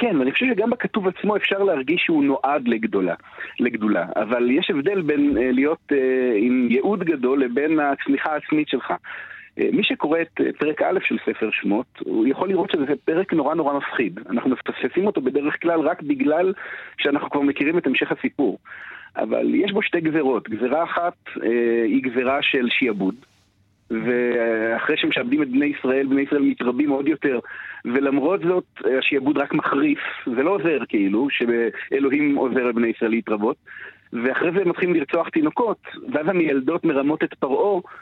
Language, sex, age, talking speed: Hebrew, male, 40-59, 160 wpm